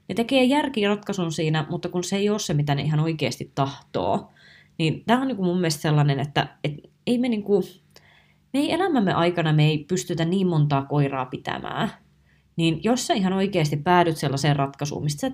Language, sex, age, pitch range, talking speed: Finnish, female, 20-39, 150-190 Hz, 190 wpm